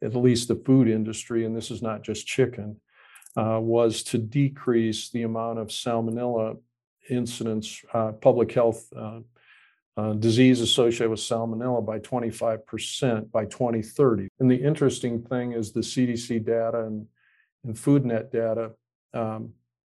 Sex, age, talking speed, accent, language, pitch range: male, 50-69, 135 wpm, American, English, 110-125 Hz